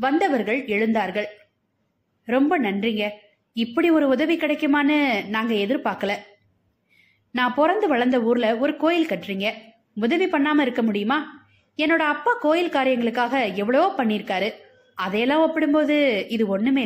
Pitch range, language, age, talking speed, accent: 210-300 Hz, Tamil, 20-39, 110 wpm, native